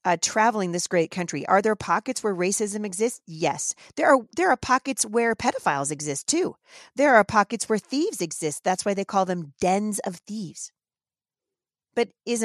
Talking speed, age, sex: 175 wpm, 40-59, female